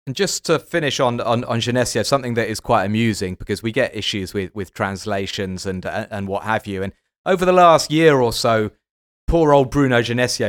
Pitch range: 105-135 Hz